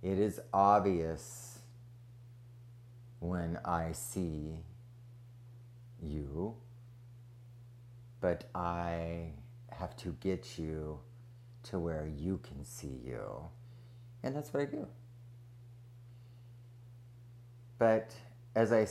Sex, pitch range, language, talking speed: male, 85-120 Hz, English, 85 wpm